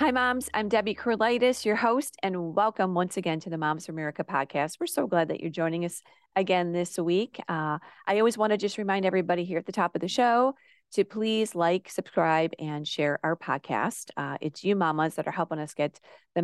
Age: 40-59